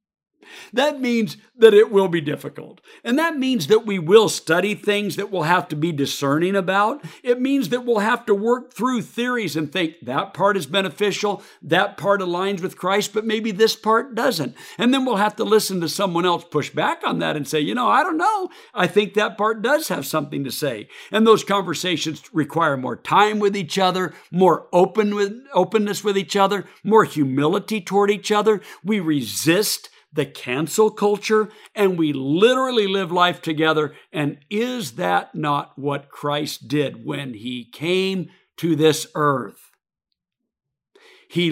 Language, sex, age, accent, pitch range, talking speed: English, male, 60-79, American, 160-220 Hz, 175 wpm